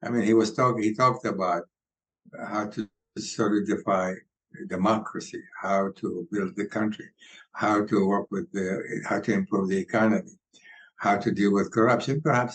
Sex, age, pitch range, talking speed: male, 60-79, 105-130 Hz, 160 wpm